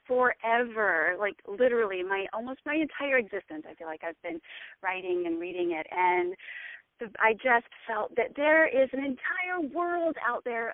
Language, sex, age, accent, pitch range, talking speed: English, female, 30-49, American, 200-260 Hz, 160 wpm